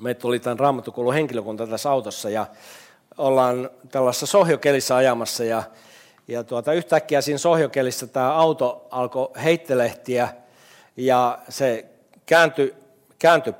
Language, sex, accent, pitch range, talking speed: Finnish, male, native, 120-155 Hz, 110 wpm